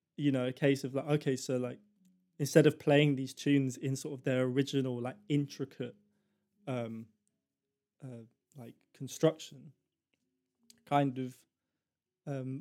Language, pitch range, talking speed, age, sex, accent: English, 125-150 Hz, 135 wpm, 20-39, male, British